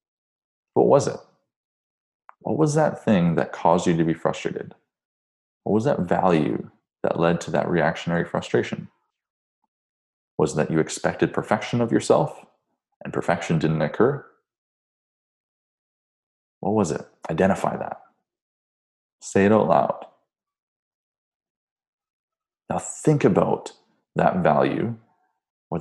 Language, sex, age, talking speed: English, male, 20-39, 115 wpm